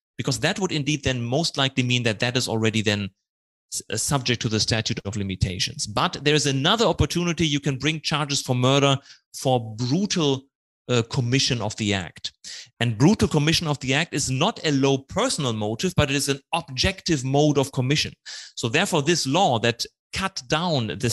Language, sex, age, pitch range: Thai, male, 30-49, 120-150 Hz